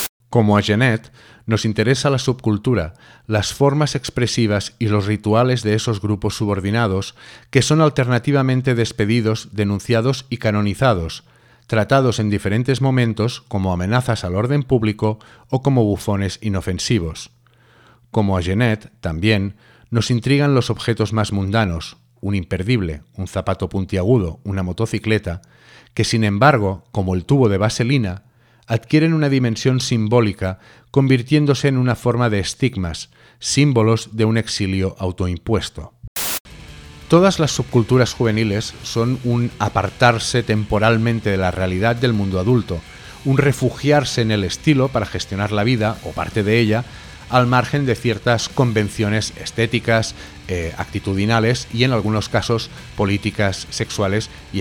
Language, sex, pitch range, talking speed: Spanish, male, 100-125 Hz, 130 wpm